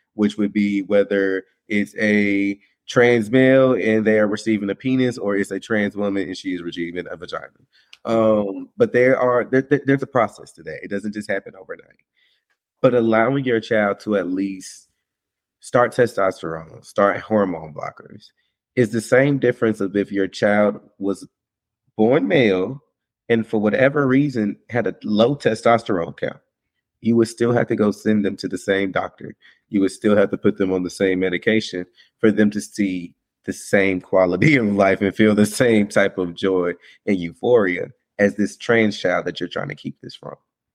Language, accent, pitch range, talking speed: English, American, 95-115 Hz, 185 wpm